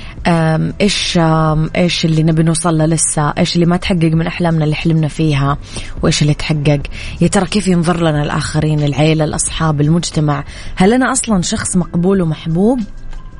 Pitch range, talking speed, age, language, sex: 155-185 Hz, 150 wpm, 20-39, Arabic, female